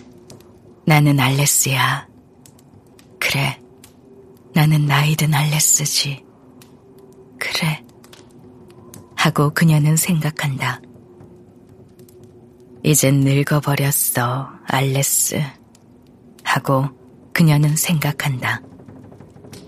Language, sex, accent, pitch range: Korean, female, native, 125-150 Hz